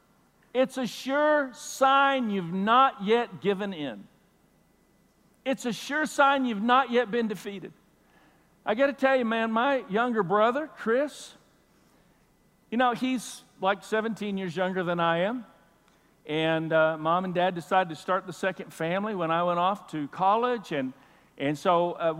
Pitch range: 170-230 Hz